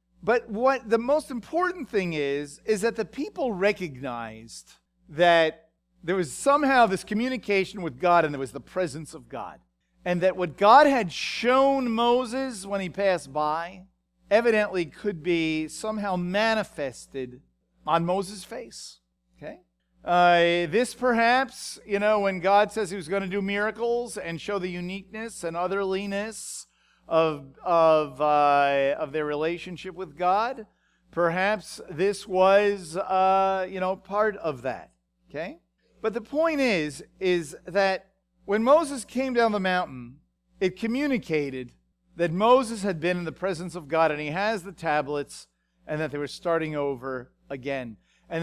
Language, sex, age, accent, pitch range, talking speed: English, male, 40-59, American, 160-215 Hz, 150 wpm